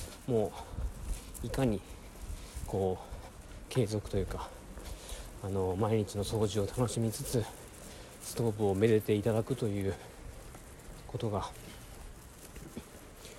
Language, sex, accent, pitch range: Japanese, male, native, 95-120 Hz